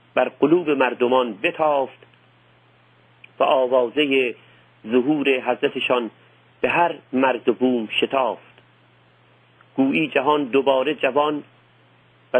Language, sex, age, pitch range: Persian, male, 50-69, 105-150 Hz